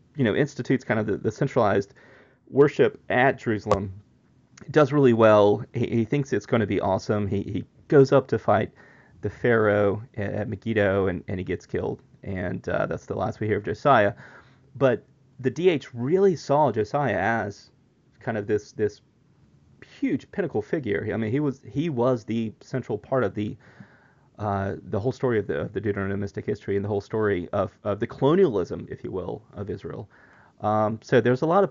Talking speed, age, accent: 190 wpm, 30-49, American